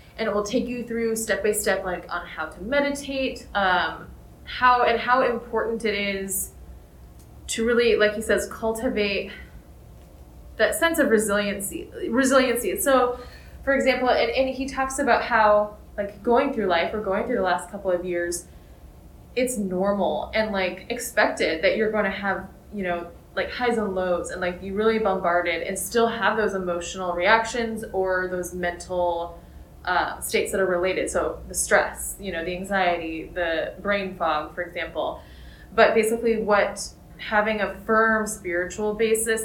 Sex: female